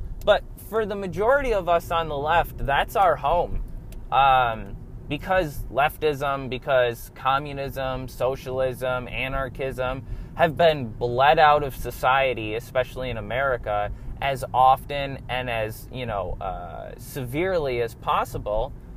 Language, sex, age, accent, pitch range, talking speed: English, male, 20-39, American, 120-165 Hz, 120 wpm